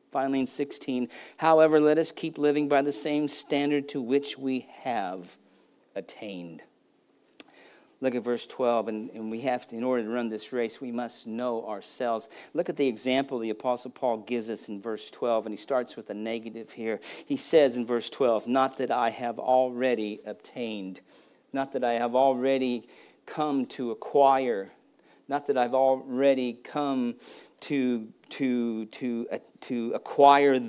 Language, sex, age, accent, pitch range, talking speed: English, male, 50-69, American, 120-140 Hz, 165 wpm